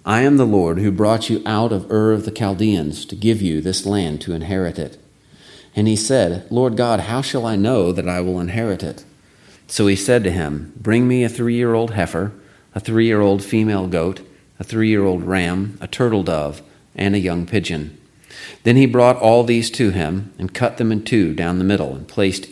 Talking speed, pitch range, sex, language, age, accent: 205 wpm, 90-110 Hz, male, English, 40-59, American